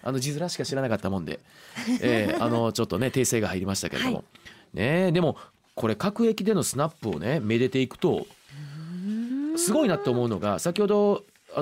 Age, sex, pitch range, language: 30-49, male, 125-210 Hz, Japanese